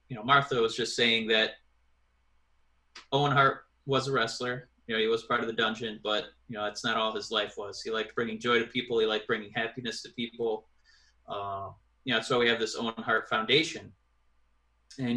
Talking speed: 210 wpm